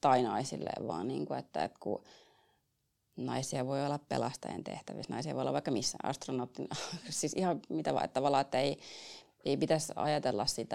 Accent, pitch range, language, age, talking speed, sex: native, 130-155 Hz, Finnish, 20-39, 175 wpm, female